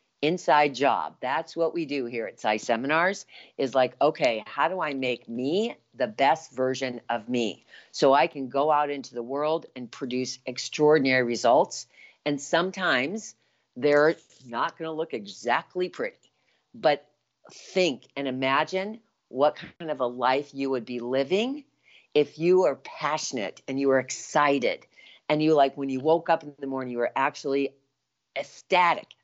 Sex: female